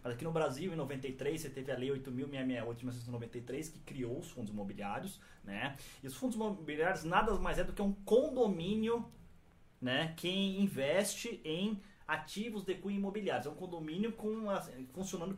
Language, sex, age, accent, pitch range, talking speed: Portuguese, male, 20-39, Brazilian, 125-190 Hz, 165 wpm